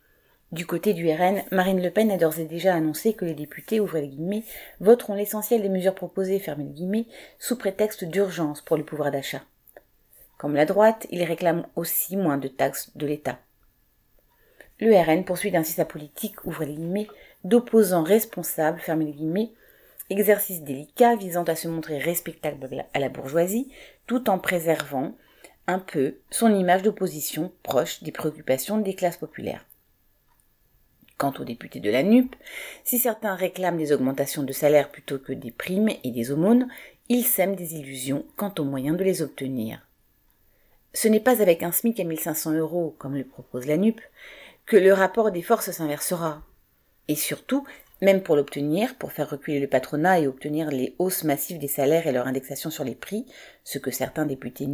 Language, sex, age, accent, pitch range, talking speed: French, female, 30-49, French, 145-200 Hz, 170 wpm